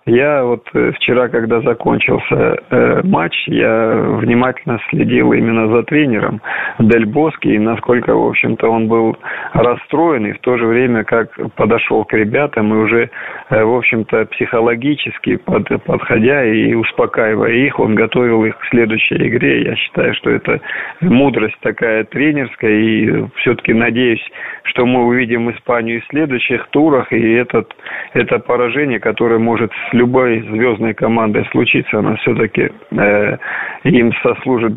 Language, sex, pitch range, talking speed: Russian, male, 110-120 Hz, 140 wpm